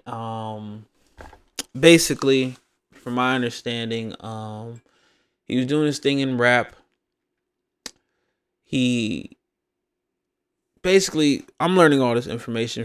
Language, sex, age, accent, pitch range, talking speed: English, male, 20-39, American, 115-130 Hz, 95 wpm